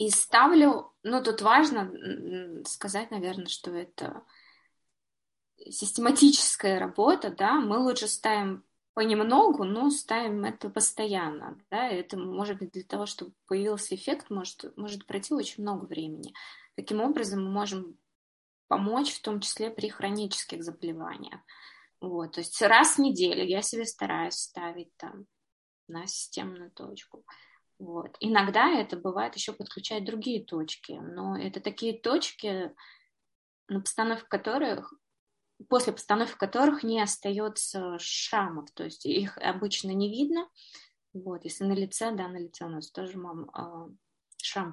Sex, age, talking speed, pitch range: female, 20-39, 130 wpm, 180-225 Hz